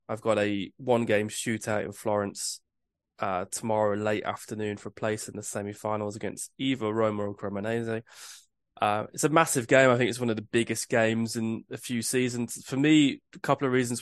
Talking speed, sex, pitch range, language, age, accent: 200 wpm, male, 110-125 Hz, English, 20-39, British